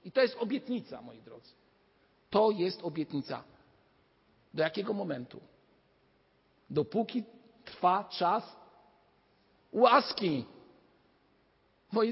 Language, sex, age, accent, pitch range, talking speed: Polish, male, 50-69, native, 150-215 Hz, 85 wpm